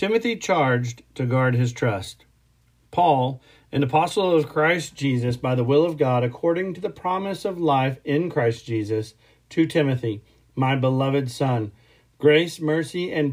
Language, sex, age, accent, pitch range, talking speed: English, male, 40-59, American, 125-160 Hz, 155 wpm